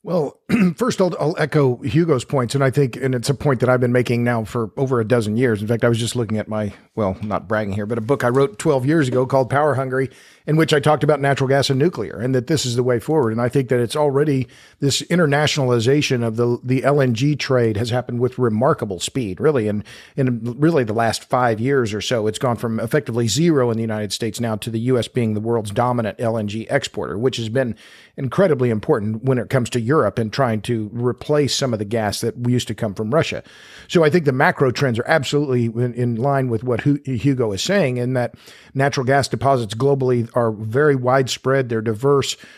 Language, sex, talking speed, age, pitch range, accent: English, male, 230 wpm, 50-69, 120-140 Hz, American